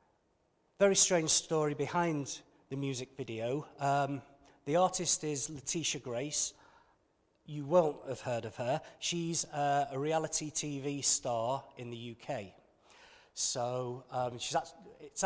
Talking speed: 120 wpm